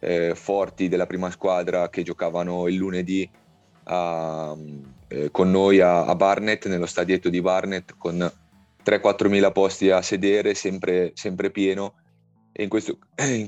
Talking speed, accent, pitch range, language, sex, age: 140 wpm, native, 85-95 Hz, Italian, male, 30-49